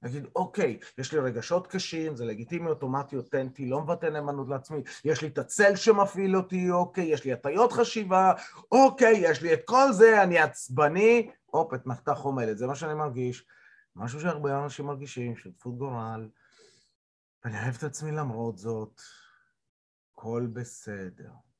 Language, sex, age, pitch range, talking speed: Hebrew, male, 30-49, 120-170 Hz, 155 wpm